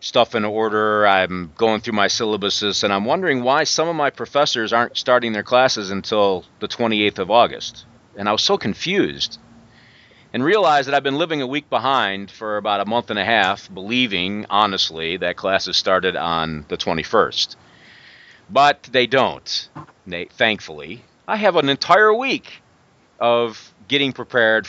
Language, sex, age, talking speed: English, male, 40-59, 160 wpm